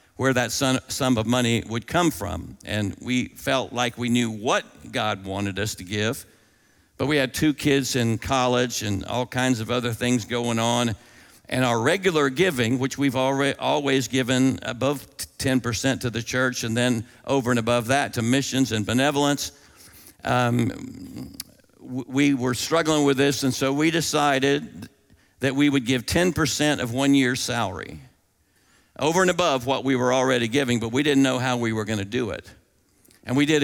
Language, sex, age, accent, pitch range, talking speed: English, male, 50-69, American, 115-140 Hz, 175 wpm